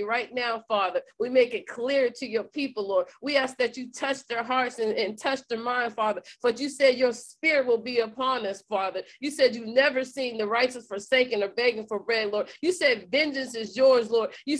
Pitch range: 215-260 Hz